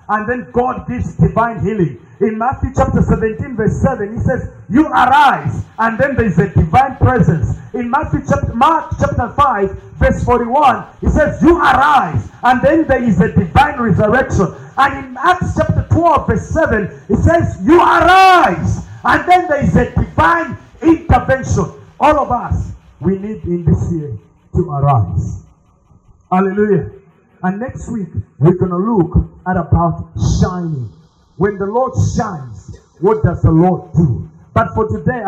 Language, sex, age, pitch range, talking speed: English, male, 50-69, 135-210 Hz, 160 wpm